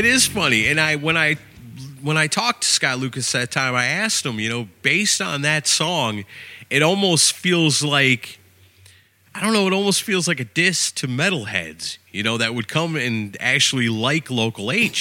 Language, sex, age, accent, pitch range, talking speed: English, male, 30-49, American, 105-155 Hz, 195 wpm